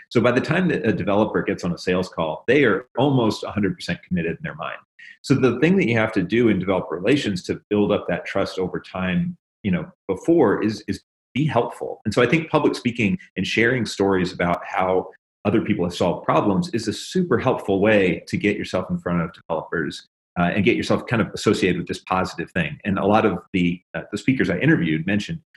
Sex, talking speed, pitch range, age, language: male, 225 wpm, 90-115 Hz, 30-49, English